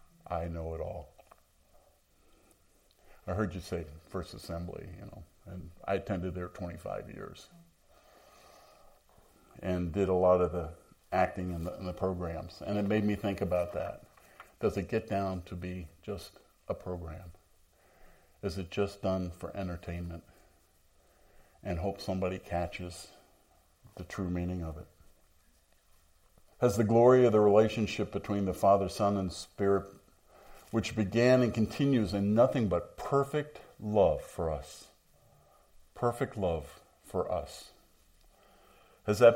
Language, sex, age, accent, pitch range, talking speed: English, male, 50-69, American, 85-100 Hz, 135 wpm